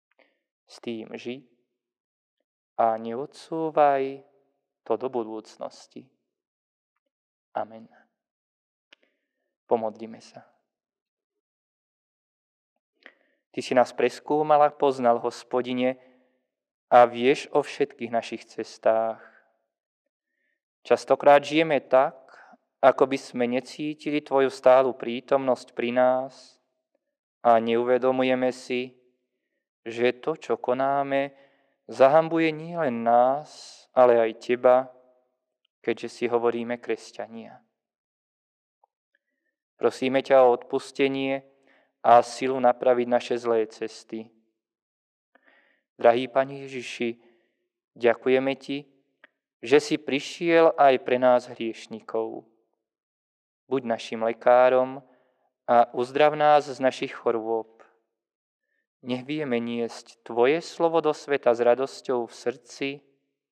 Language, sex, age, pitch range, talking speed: Slovak, male, 20-39, 115-140 Hz, 90 wpm